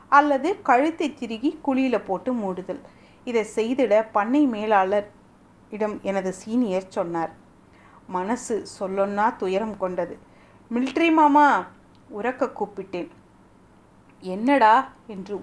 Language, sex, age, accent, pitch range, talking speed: Tamil, female, 30-49, native, 200-270 Hz, 90 wpm